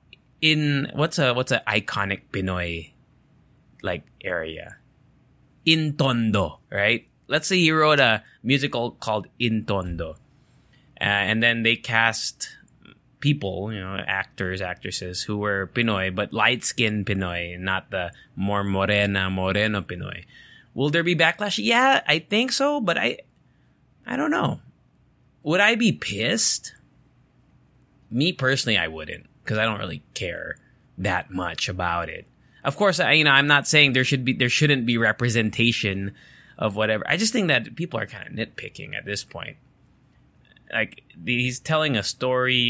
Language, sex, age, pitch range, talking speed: English, male, 20-39, 105-145 Hz, 150 wpm